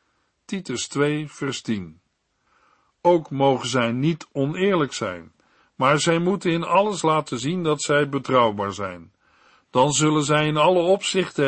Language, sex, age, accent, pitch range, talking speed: Dutch, male, 50-69, Dutch, 125-185 Hz, 140 wpm